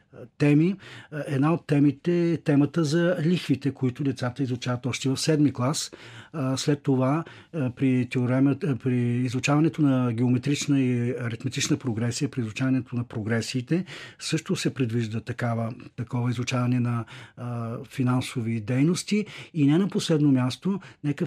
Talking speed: 125 wpm